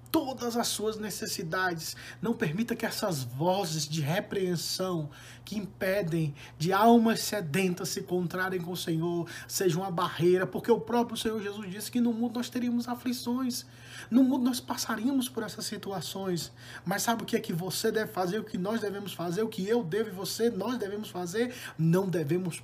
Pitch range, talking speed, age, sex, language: 155-210 Hz, 180 wpm, 20-39, male, Portuguese